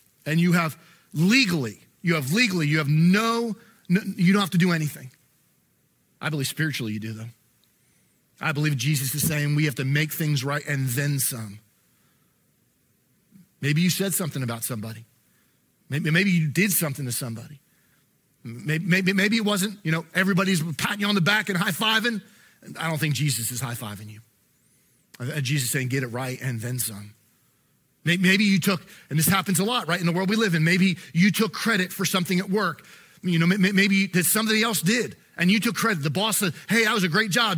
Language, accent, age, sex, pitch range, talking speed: English, American, 40-59, male, 145-195 Hz, 200 wpm